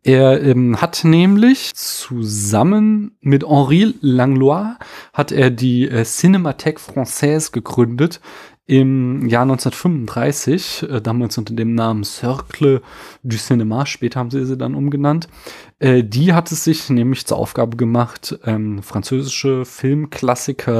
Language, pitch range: German, 115-140 Hz